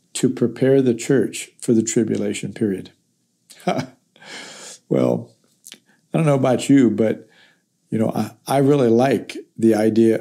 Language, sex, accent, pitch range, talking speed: English, male, American, 110-125 Hz, 135 wpm